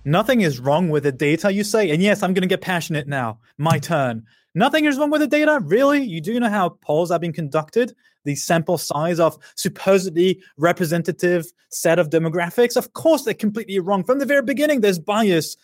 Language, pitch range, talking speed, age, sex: English, 155-220 Hz, 205 wpm, 20-39, male